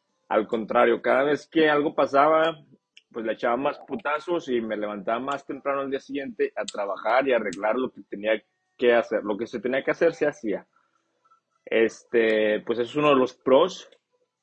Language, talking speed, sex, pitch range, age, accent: Spanish, 185 wpm, male, 110-135 Hz, 30-49, Mexican